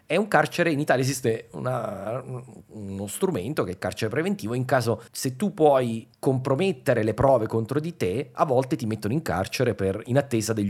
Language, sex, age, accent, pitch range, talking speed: Italian, male, 30-49, native, 105-145 Hz, 185 wpm